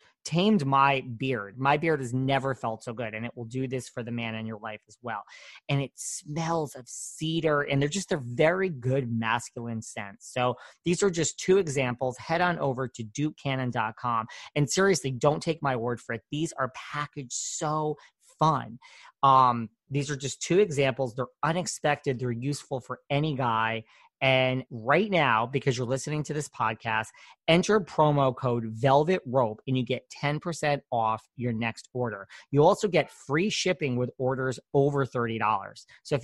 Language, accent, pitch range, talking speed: English, American, 120-150 Hz, 175 wpm